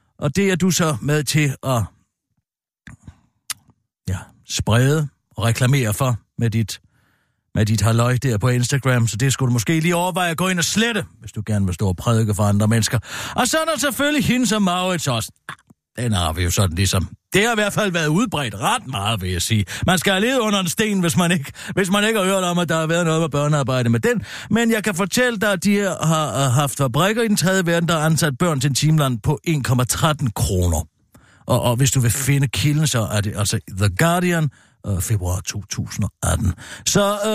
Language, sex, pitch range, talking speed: Danish, male, 115-190 Hz, 215 wpm